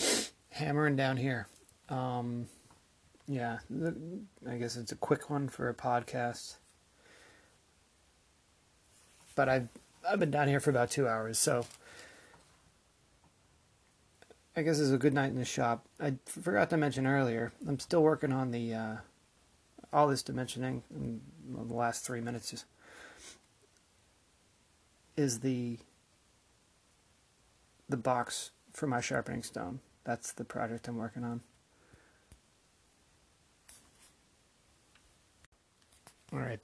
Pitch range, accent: 115-135 Hz, American